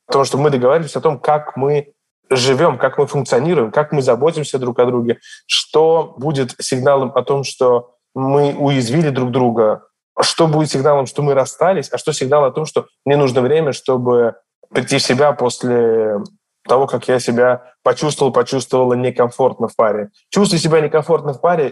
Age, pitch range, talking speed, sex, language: 20-39, 125-145 Hz, 170 wpm, male, Russian